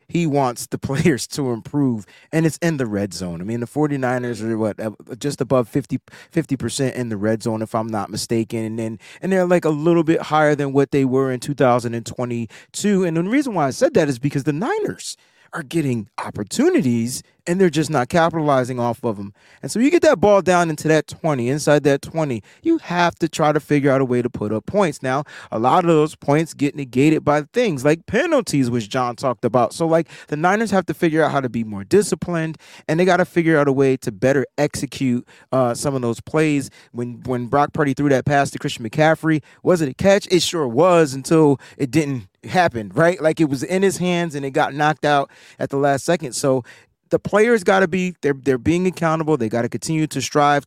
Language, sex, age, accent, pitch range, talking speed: English, male, 30-49, American, 125-165 Hz, 225 wpm